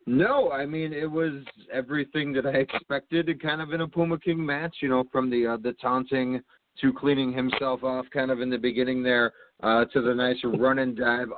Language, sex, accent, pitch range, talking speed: English, male, American, 120-145 Hz, 210 wpm